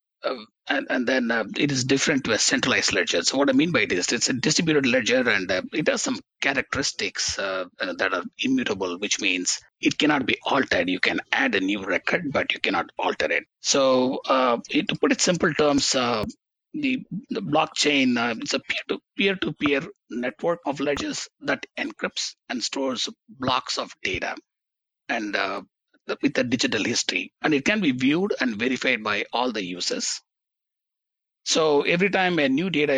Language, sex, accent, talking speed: English, male, Indian, 180 wpm